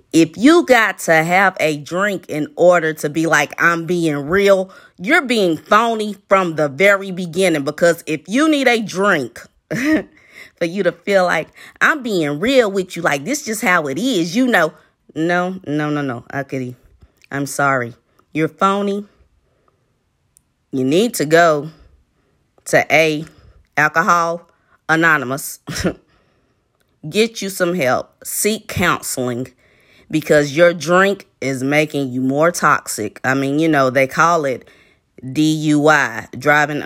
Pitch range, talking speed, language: 145-190 Hz, 140 wpm, English